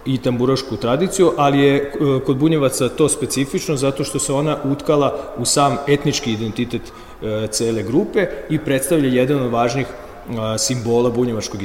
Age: 40-59